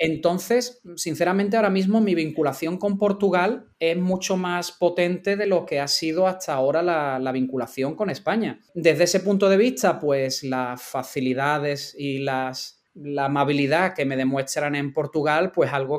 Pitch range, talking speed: 135-180 Hz, 160 wpm